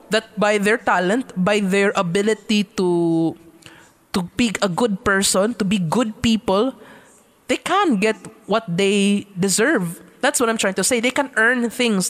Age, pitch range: 20-39, 185-235 Hz